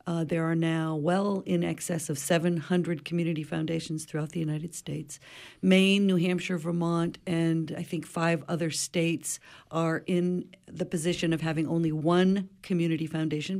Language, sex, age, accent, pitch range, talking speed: English, female, 50-69, American, 155-180 Hz, 155 wpm